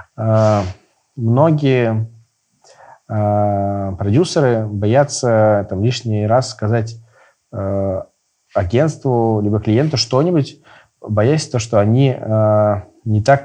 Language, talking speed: Russian, 75 wpm